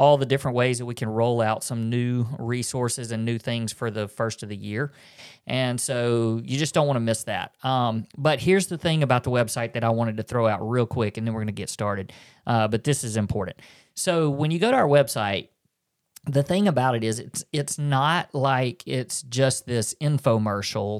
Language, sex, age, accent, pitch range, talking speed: English, male, 40-59, American, 115-145 Hz, 225 wpm